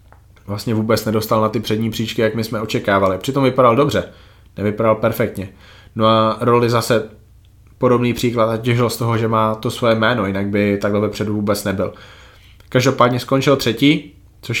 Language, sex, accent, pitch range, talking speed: Czech, male, native, 105-120 Hz, 170 wpm